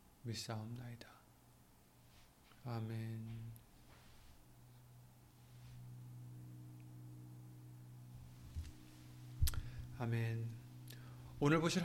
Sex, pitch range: male, 95-145 Hz